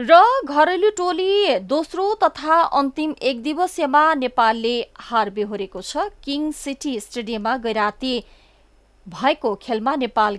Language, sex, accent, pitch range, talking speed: English, female, Indian, 205-290 Hz, 115 wpm